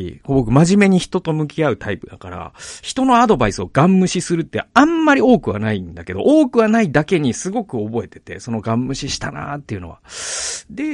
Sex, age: male, 40-59